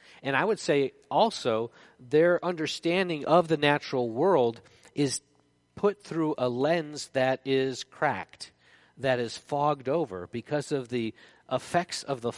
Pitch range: 120-160 Hz